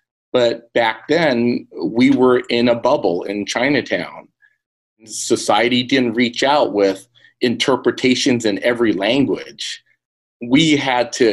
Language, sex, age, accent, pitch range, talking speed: English, male, 40-59, American, 115-135 Hz, 115 wpm